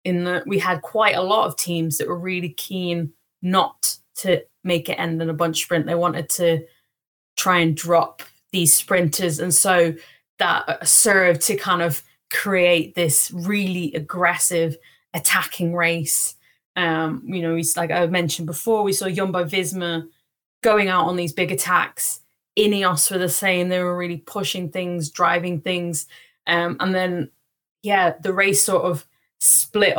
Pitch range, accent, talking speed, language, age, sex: 165-190 Hz, British, 160 wpm, English, 20-39, female